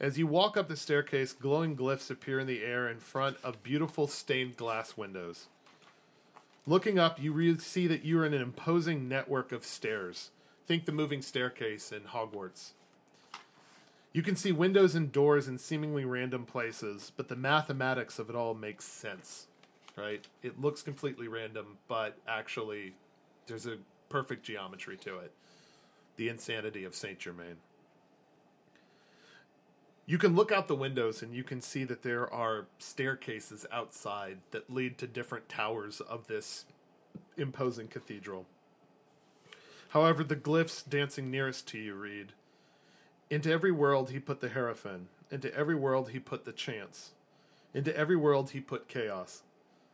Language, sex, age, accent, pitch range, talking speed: English, male, 40-59, American, 120-150 Hz, 150 wpm